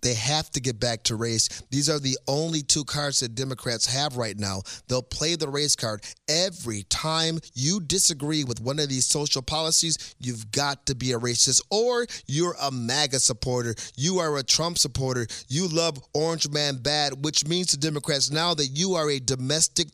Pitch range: 130-195 Hz